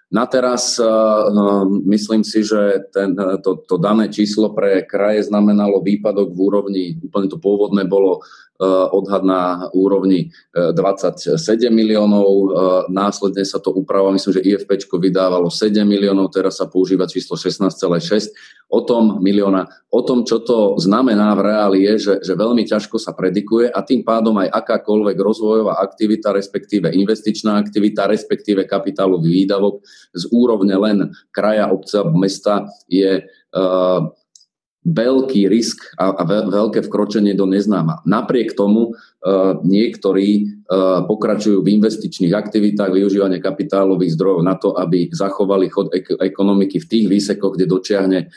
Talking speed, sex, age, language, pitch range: 135 wpm, male, 30-49, Slovak, 95-110 Hz